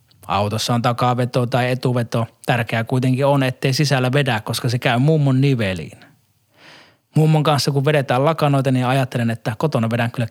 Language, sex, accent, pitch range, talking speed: Finnish, male, native, 115-145 Hz, 155 wpm